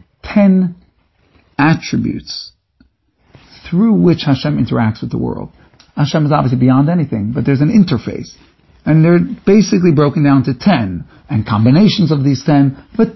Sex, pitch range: male, 130-170 Hz